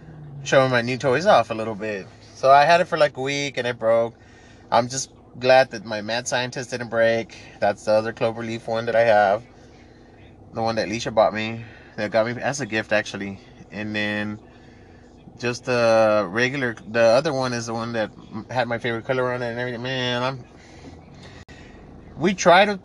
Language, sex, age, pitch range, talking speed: English, male, 20-39, 115-145 Hz, 195 wpm